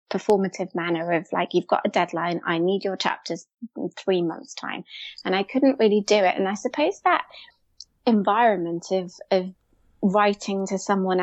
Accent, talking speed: British, 170 wpm